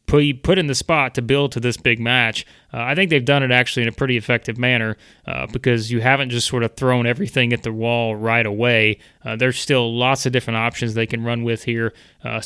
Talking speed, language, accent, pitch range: 235 wpm, English, American, 120-140 Hz